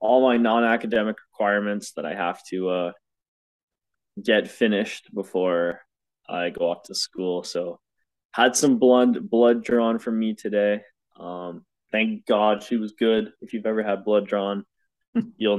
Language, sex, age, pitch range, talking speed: English, male, 20-39, 100-125 Hz, 150 wpm